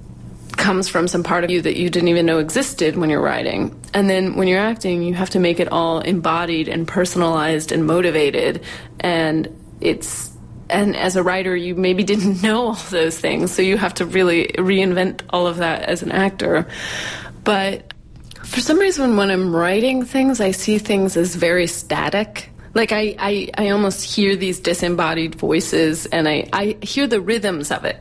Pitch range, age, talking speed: 165-195 Hz, 30-49, 185 wpm